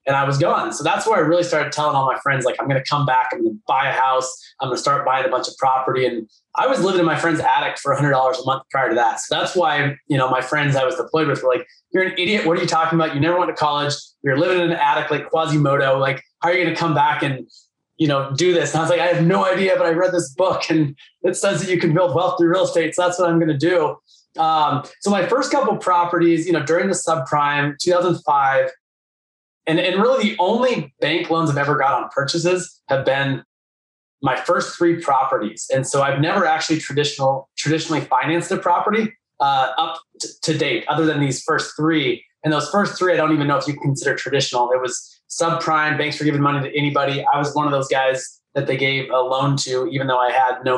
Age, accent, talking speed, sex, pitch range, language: 20-39, American, 250 wpm, male, 140-175 Hz, English